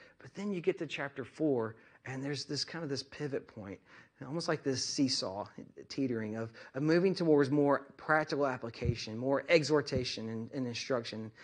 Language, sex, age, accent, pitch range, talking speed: English, male, 40-59, American, 130-170 Hz, 170 wpm